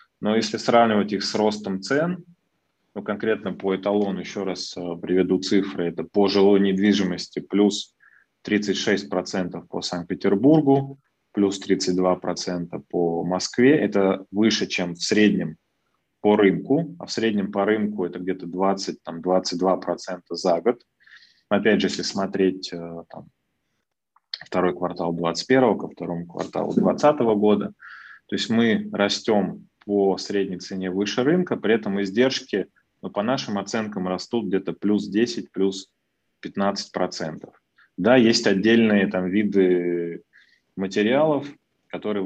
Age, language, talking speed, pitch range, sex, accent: 20-39, Russian, 120 wpm, 90-105 Hz, male, native